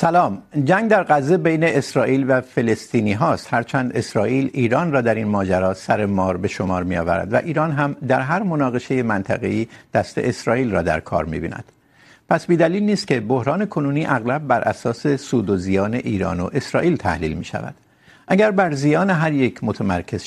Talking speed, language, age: 175 wpm, Urdu, 60-79